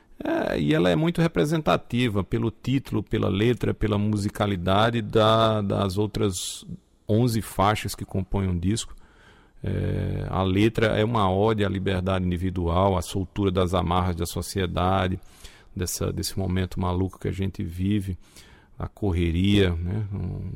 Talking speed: 130 wpm